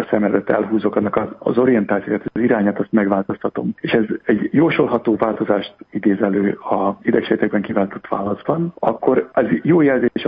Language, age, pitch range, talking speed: Hungarian, 50-69, 105-120 Hz, 140 wpm